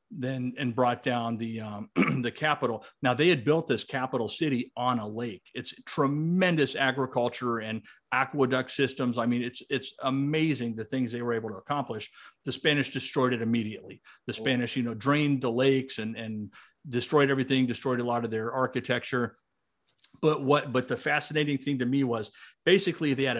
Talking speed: 180 wpm